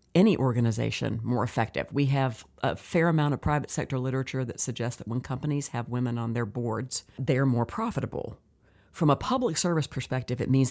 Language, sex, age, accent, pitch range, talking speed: English, female, 50-69, American, 120-150 Hz, 185 wpm